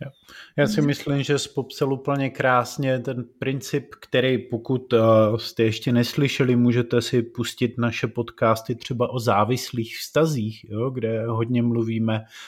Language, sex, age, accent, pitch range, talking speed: Czech, male, 30-49, native, 115-135 Hz, 135 wpm